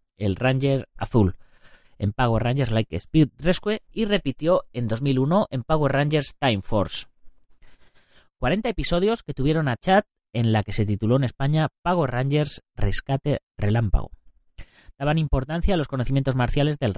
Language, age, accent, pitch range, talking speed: Spanish, 30-49, Spanish, 110-155 Hz, 150 wpm